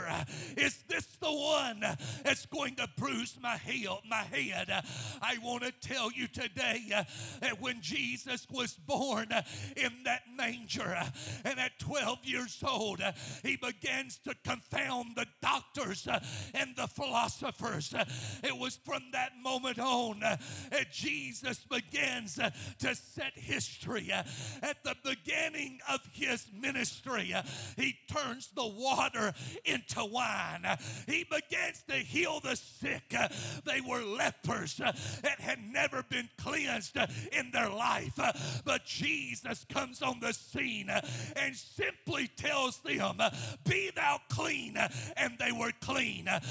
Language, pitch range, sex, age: English, 230-275 Hz, male, 50-69